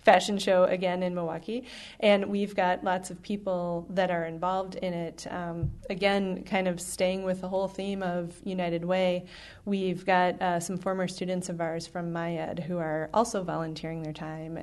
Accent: American